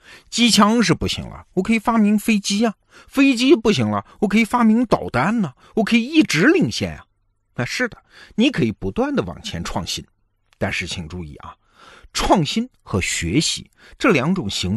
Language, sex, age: Chinese, male, 50-69